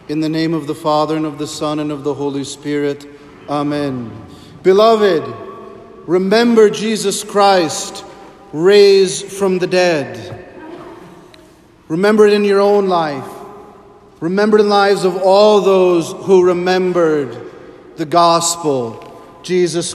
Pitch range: 155-180 Hz